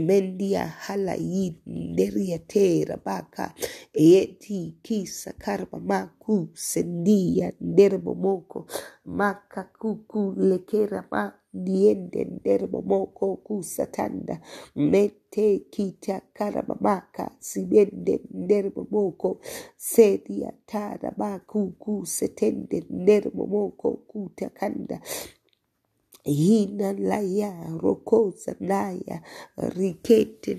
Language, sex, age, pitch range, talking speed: English, female, 40-59, 185-210 Hz, 80 wpm